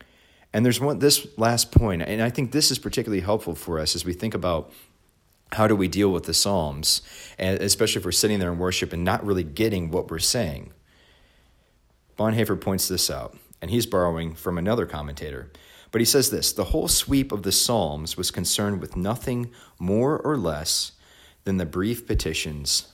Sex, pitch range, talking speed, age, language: male, 80-105 Hz, 185 wpm, 40-59, English